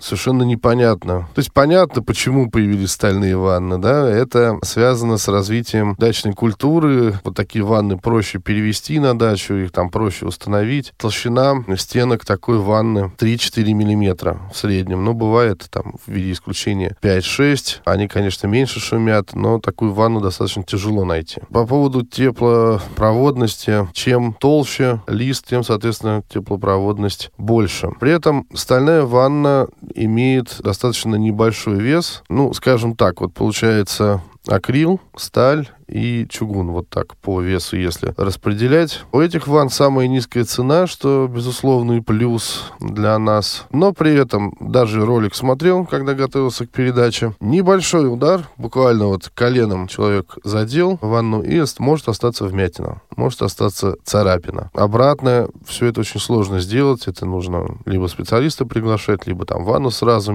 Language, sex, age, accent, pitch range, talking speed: Russian, male, 20-39, native, 100-130 Hz, 135 wpm